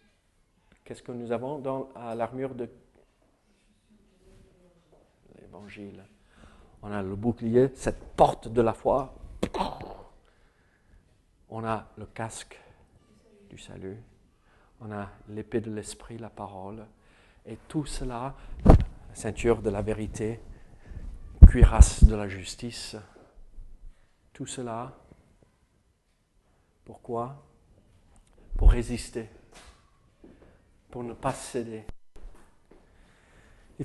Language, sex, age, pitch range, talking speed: French, male, 50-69, 100-130 Hz, 90 wpm